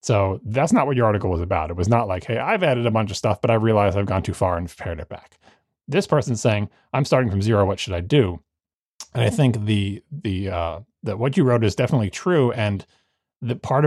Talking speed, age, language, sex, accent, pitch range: 245 wpm, 30-49, English, male, American, 100-145 Hz